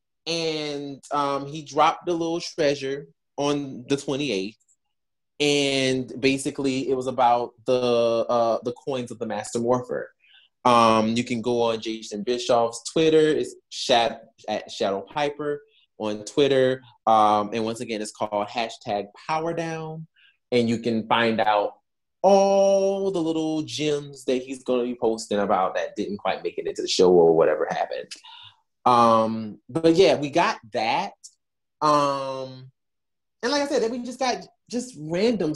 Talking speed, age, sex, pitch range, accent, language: 150 wpm, 20-39, male, 120-180 Hz, American, English